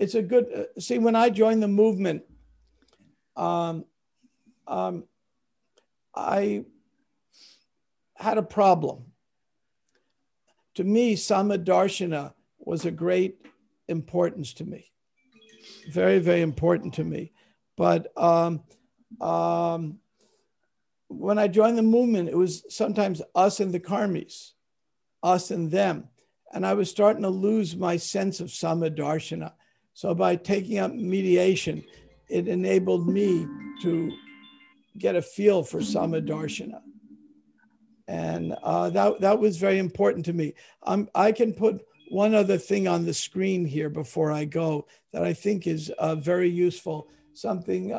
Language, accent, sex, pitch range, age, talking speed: English, American, male, 160-210 Hz, 60-79, 130 wpm